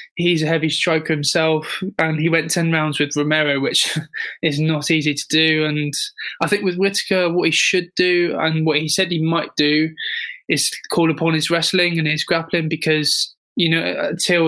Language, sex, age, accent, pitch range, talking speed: English, male, 20-39, British, 155-170 Hz, 190 wpm